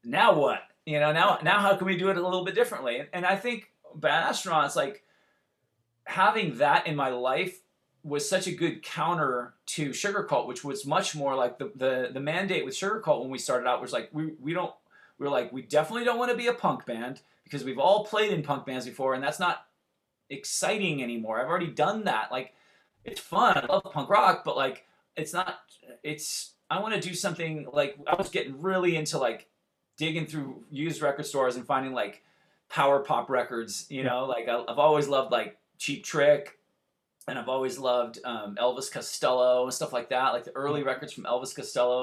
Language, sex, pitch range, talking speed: English, male, 130-180 Hz, 210 wpm